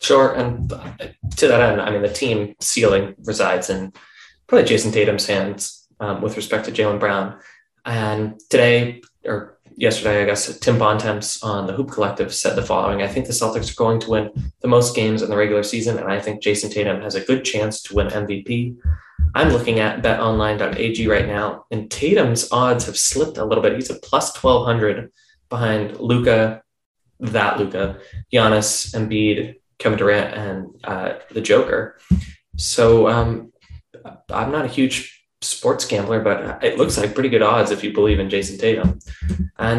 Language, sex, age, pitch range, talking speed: English, male, 20-39, 105-120 Hz, 175 wpm